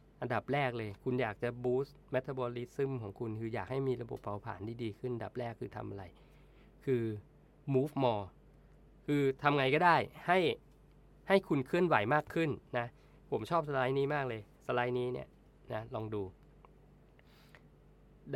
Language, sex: Thai, male